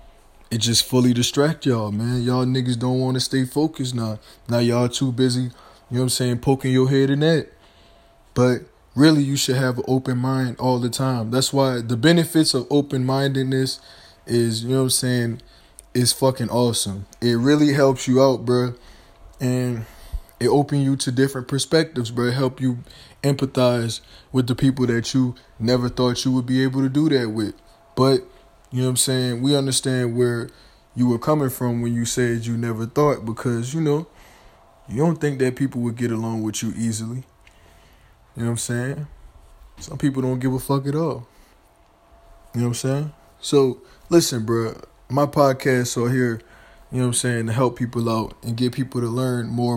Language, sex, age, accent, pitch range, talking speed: English, male, 20-39, American, 115-130 Hz, 195 wpm